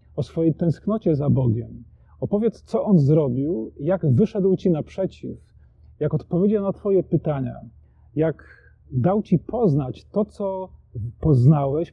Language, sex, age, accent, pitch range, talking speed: Polish, male, 40-59, native, 130-190 Hz, 125 wpm